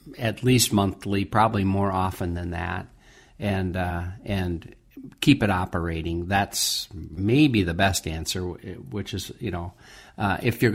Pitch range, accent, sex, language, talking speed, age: 90-105 Hz, American, male, English, 145 wpm, 50-69